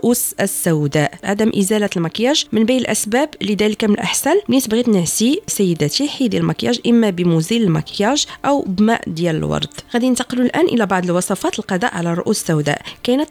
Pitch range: 180-245 Hz